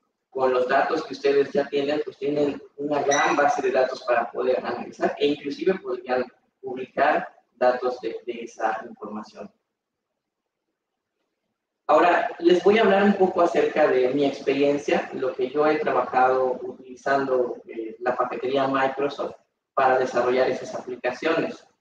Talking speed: 140 wpm